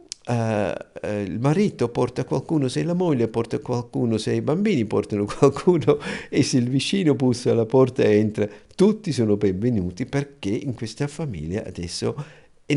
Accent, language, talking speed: native, Italian, 160 wpm